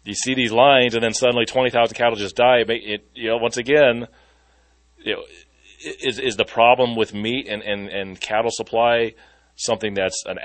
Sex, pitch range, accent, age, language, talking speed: male, 100-120 Hz, American, 30-49, English, 190 wpm